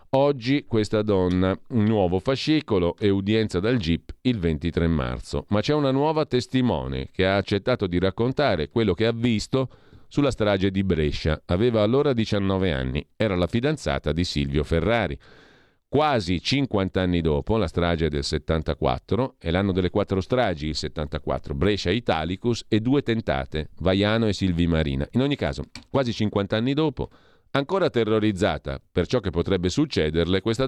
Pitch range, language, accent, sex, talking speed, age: 85-115 Hz, Italian, native, male, 160 wpm, 40-59